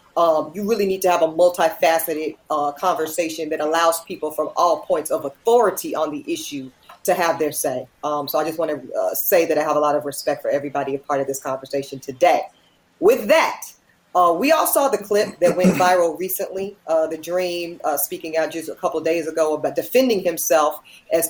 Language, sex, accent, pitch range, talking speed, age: English, female, American, 155-195 Hz, 215 wpm, 40-59